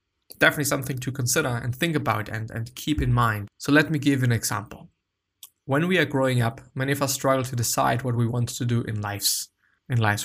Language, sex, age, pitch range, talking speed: English, male, 20-39, 120-140 Hz, 220 wpm